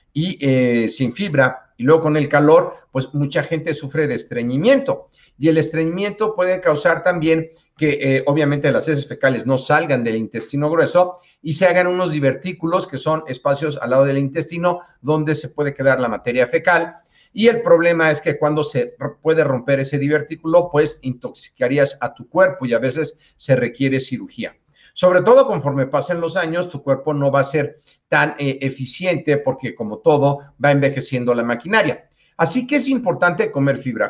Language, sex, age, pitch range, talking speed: Spanish, male, 50-69, 135-175 Hz, 180 wpm